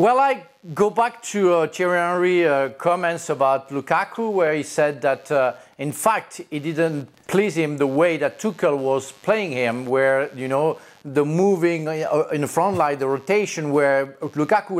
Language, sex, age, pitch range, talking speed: English, male, 40-59, 150-210 Hz, 175 wpm